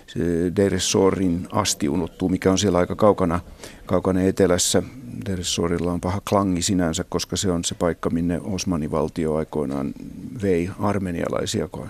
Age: 50-69